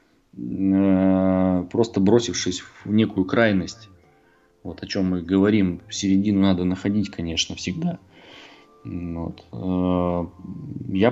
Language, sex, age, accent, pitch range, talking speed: Russian, male, 20-39, native, 95-120 Hz, 95 wpm